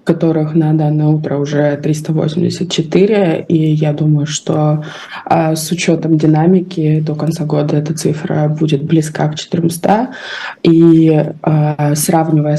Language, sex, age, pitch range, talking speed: Russian, female, 20-39, 155-170 Hz, 115 wpm